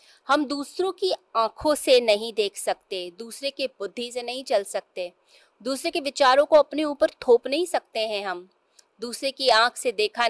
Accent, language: native, Hindi